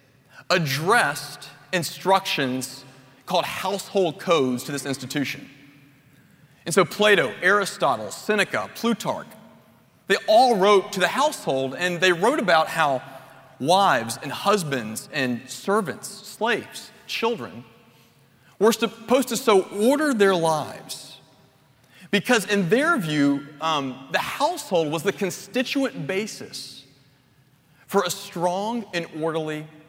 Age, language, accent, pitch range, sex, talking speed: 40-59, English, American, 135-190 Hz, male, 110 wpm